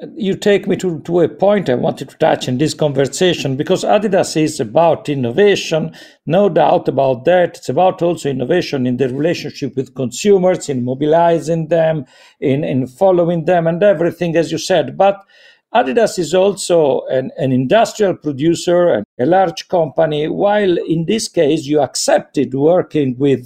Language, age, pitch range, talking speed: English, 50-69, 145-190 Hz, 165 wpm